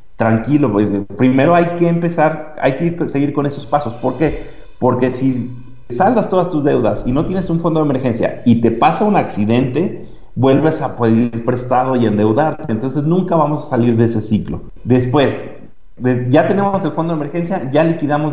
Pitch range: 120-155 Hz